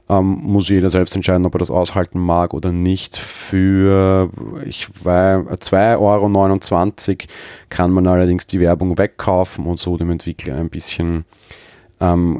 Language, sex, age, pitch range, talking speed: German, male, 30-49, 85-105 Hz, 145 wpm